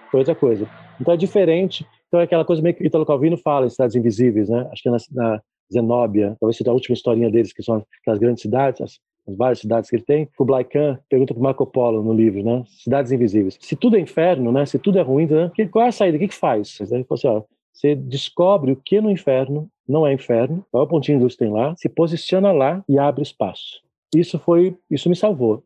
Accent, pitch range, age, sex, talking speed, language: Brazilian, 125-160 Hz, 40-59, male, 235 wpm, Portuguese